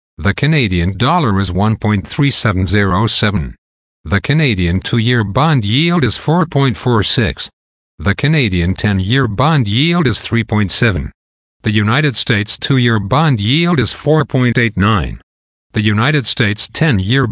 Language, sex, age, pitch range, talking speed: English, male, 50-69, 95-125 Hz, 105 wpm